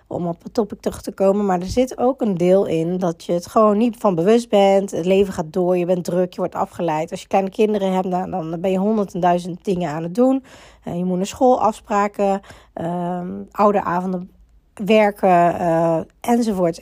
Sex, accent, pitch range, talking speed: female, Dutch, 180-225 Hz, 200 wpm